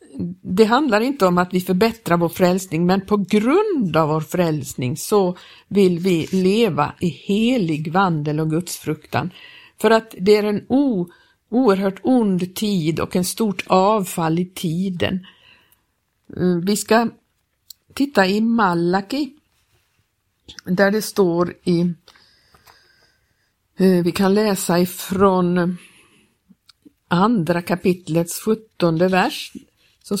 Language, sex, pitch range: Swedish, female, 175-215 Hz